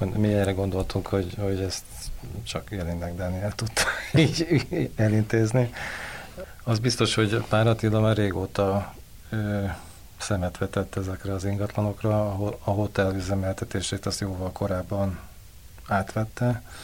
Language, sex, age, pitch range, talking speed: Hungarian, male, 40-59, 95-110 Hz, 120 wpm